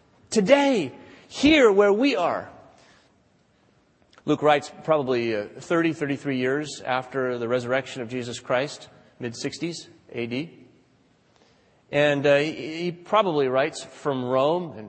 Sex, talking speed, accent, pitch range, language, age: male, 100 wpm, American, 135-190 Hz, English, 40-59